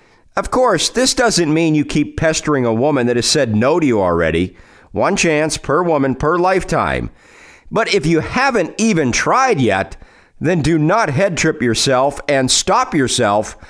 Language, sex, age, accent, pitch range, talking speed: English, male, 50-69, American, 120-175 Hz, 170 wpm